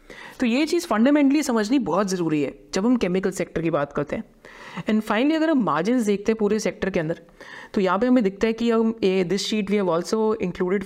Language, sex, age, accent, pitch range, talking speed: Hindi, female, 30-49, native, 185-235 Hz, 225 wpm